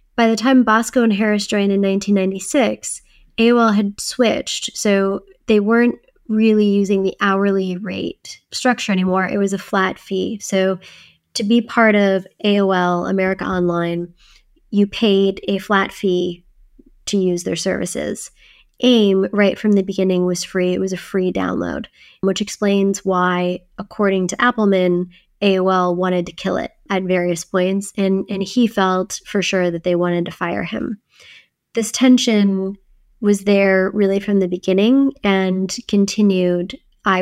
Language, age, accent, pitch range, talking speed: English, 20-39, American, 185-215 Hz, 150 wpm